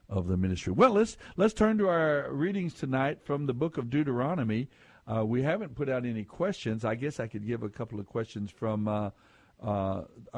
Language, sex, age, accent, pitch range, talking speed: English, male, 60-79, American, 110-145 Hz, 200 wpm